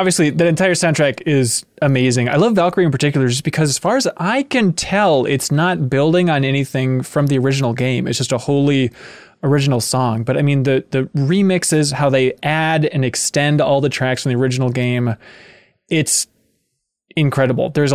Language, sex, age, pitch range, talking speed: English, male, 20-39, 125-155 Hz, 185 wpm